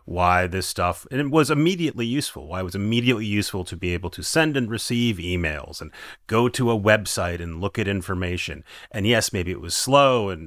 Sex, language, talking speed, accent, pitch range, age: male, English, 210 wpm, American, 85-115 Hz, 30-49